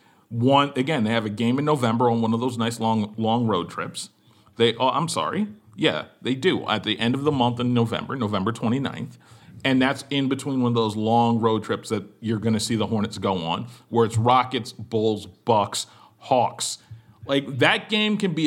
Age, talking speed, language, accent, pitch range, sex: 40-59, 210 wpm, English, American, 115-160 Hz, male